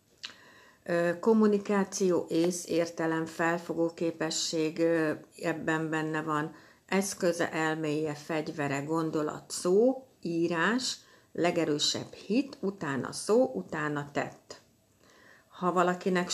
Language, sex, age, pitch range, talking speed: Hungarian, female, 60-79, 155-185 Hz, 80 wpm